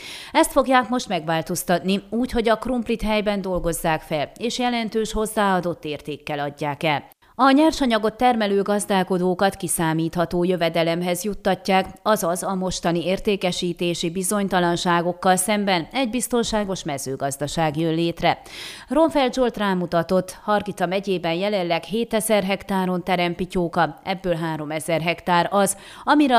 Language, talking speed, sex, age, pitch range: Hungarian, 110 wpm, female, 30-49, 170-220 Hz